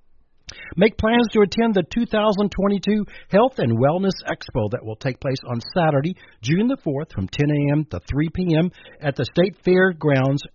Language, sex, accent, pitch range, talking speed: English, male, American, 120-180 Hz, 165 wpm